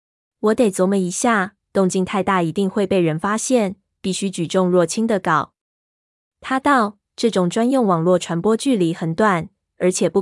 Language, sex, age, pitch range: Chinese, female, 20-39, 175-220 Hz